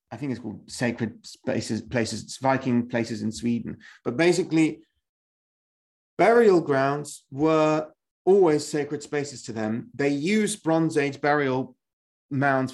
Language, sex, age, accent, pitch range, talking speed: English, male, 30-49, British, 125-165 Hz, 125 wpm